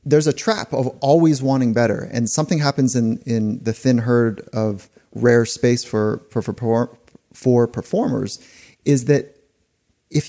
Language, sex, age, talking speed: English, male, 30-49, 150 wpm